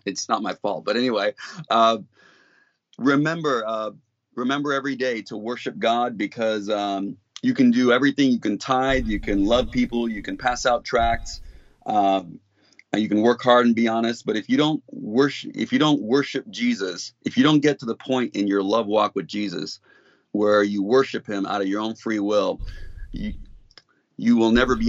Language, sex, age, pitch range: English, male, 30-49, 110-140 Hz